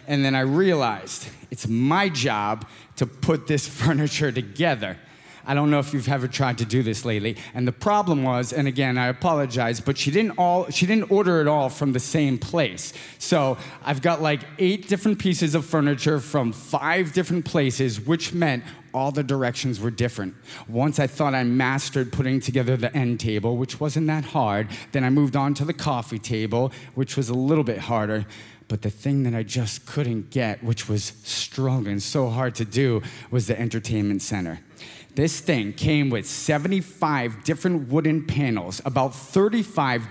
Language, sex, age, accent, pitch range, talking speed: English, male, 30-49, American, 120-160 Hz, 185 wpm